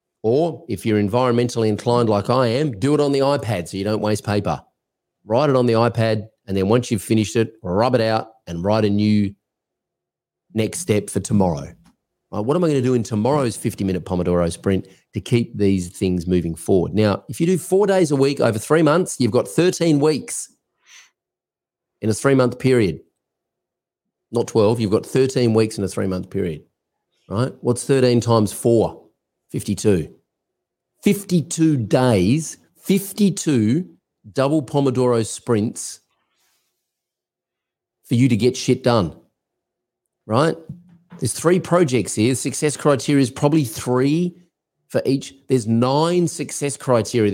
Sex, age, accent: male, 30-49, Australian